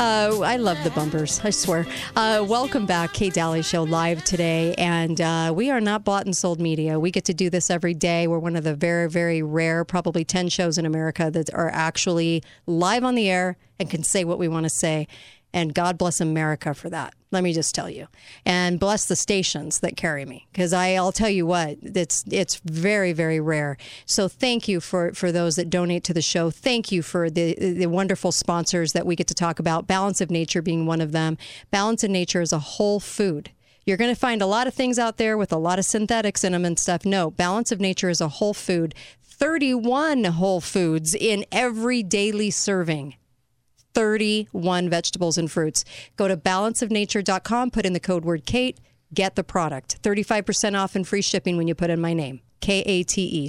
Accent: American